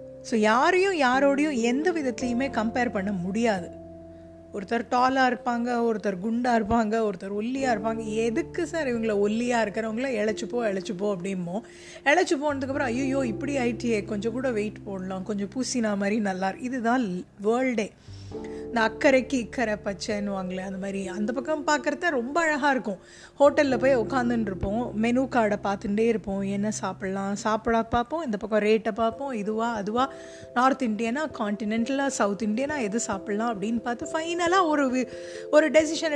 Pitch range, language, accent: 205-270 Hz, Tamil, native